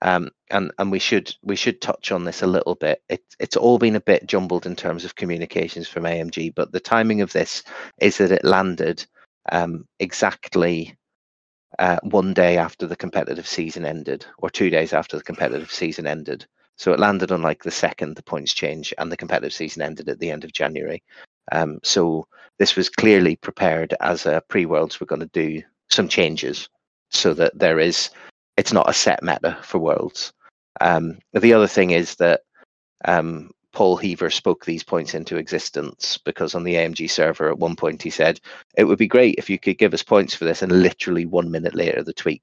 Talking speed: 200 wpm